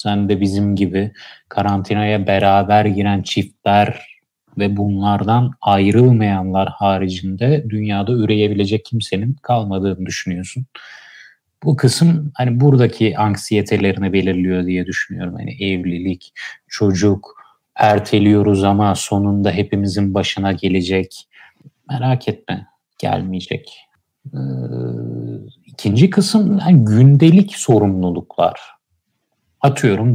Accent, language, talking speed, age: native, Turkish, 85 wpm, 30-49